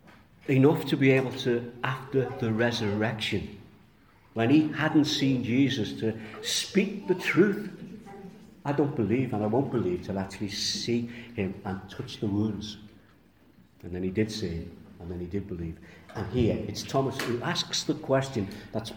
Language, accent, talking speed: English, British, 165 wpm